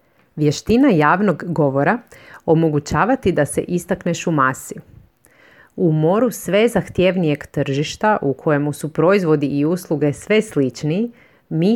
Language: Croatian